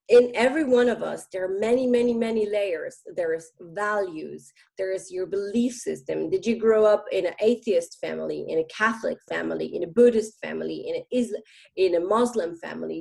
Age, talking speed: 30-49, 185 wpm